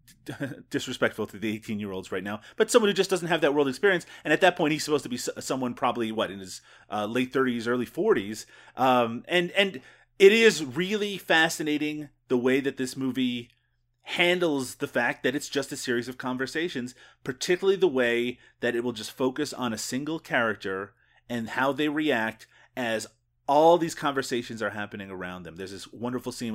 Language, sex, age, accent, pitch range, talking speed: English, male, 30-49, American, 120-145 Hz, 190 wpm